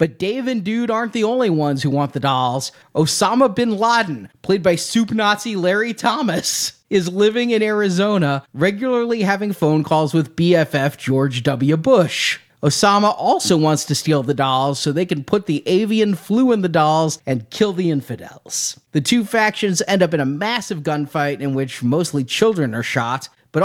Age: 30-49